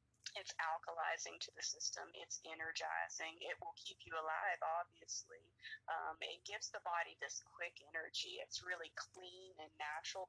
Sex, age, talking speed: female, 30-49, 150 wpm